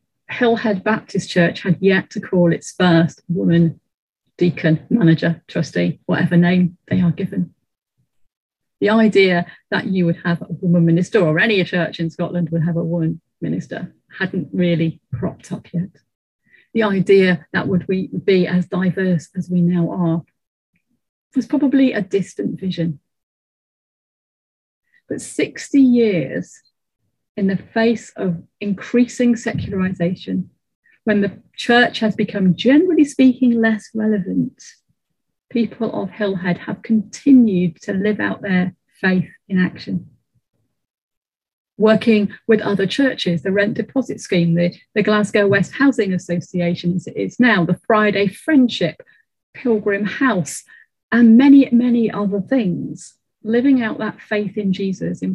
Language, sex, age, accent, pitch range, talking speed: English, female, 40-59, British, 175-220 Hz, 135 wpm